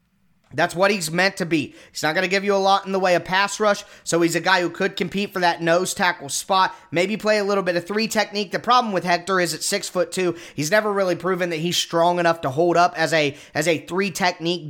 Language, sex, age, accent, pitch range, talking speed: English, male, 20-39, American, 170-200 Hz, 270 wpm